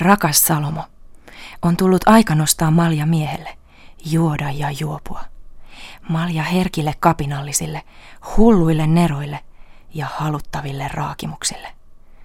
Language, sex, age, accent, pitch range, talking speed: Finnish, female, 30-49, native, 145-170 Hz, 95 wpm